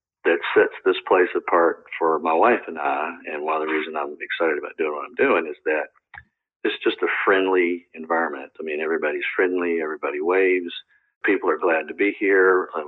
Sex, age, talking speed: male, 50-69, 195 wpm